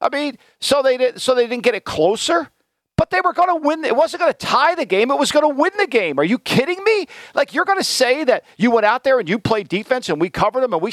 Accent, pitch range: American, 220-340 Hz